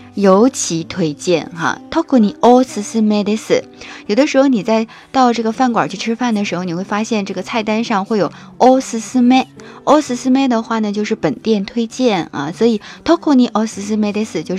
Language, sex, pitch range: Chinese, female, 190-265 Hz